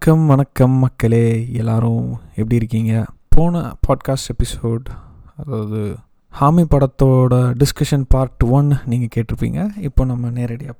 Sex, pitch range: male, 135-185 Hz